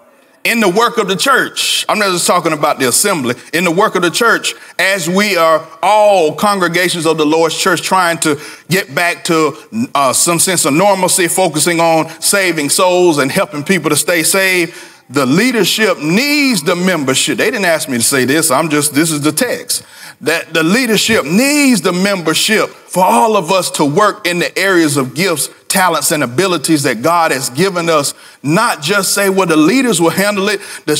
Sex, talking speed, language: male, 195 wpm, English